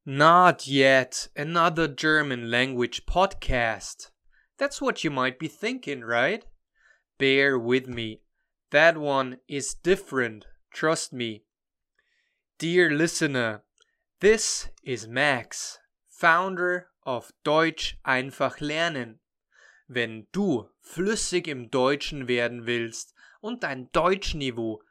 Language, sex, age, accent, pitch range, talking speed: German, male, 20-39, German, 125-165 Hz, 100 wpm